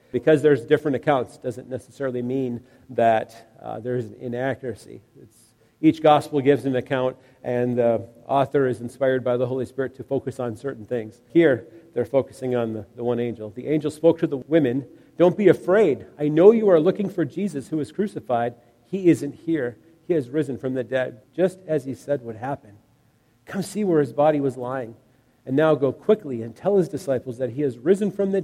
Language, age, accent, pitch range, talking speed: English, 50-69, American, 120-150 Hz, 195 wpm